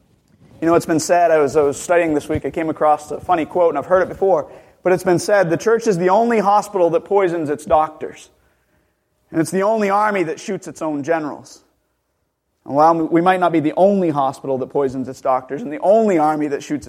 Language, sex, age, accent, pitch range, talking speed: English, male, 30-49, American, 155-220 Hz, 230 wpm